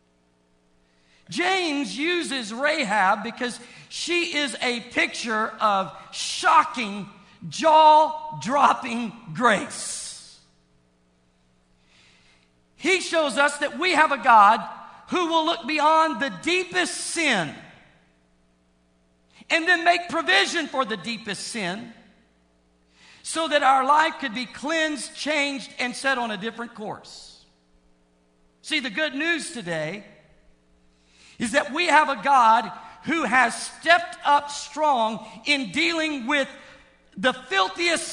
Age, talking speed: 50-69, 110 wpm